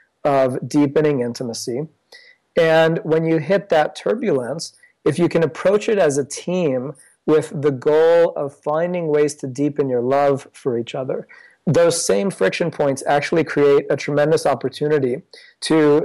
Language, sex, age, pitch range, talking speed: English, male, 40-59, 140-170 Hz, 150 wpm